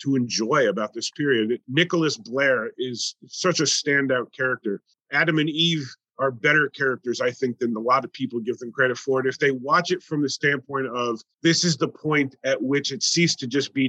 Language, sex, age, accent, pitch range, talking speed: English, male, 30-49, American, 130-160 Hz, 210 wpm